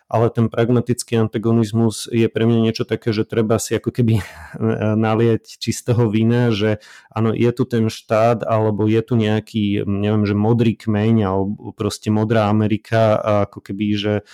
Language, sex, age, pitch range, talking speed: Slovak, male, 30-49, 105-115 Hz, 160 wpm